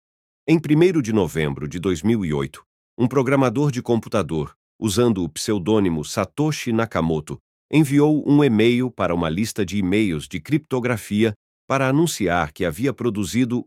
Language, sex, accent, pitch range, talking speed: Portuguese, male, Brazilian, 95-135 Hz, 130 wpm